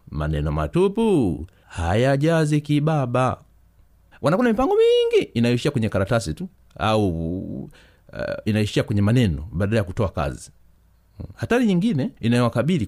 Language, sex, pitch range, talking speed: Swahili, male, 95-140 Hz, 120 wpm